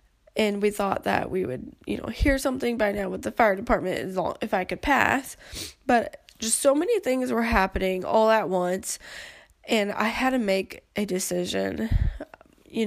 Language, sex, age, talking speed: English, female, 20-39, 175 wpm